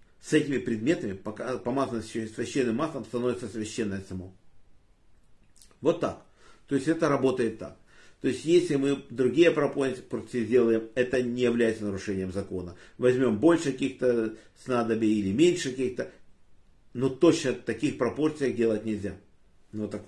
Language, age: Russian, 50-69